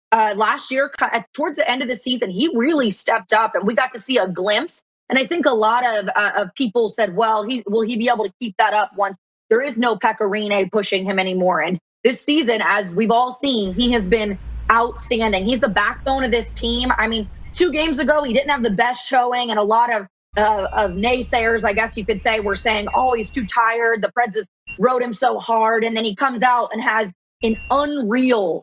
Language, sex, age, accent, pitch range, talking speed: English, female, 20-39, American, 205-240 Hz, 230 wpm